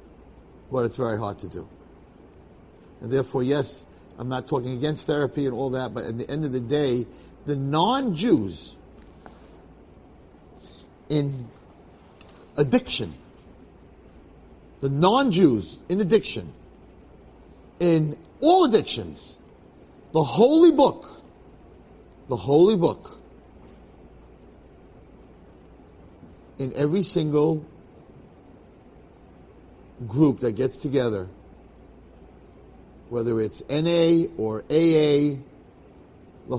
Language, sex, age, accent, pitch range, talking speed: English, male, 50-69, American, 120-155 Hz, 90 wpm